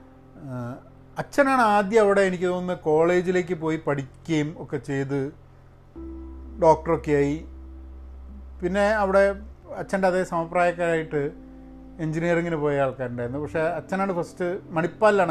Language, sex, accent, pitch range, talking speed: Malayalam, male, native, 130-165 Hz, 90 wpm